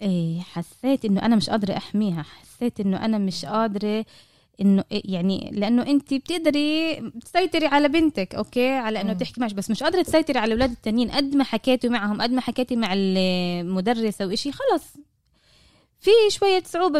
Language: Arabic